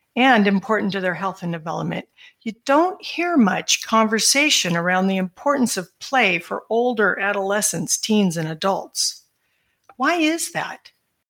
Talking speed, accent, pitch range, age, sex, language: 140 wpm, American, 195-260 Hz, 50-69, female, English